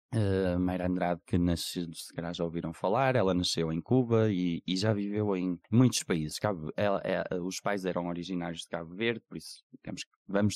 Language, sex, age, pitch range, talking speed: Portuguese, male, 20-39, 90-115 Hz, 165 wpm